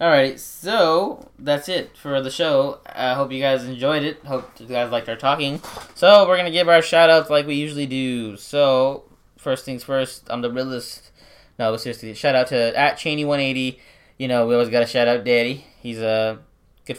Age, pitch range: 10-29, 120-150 Hz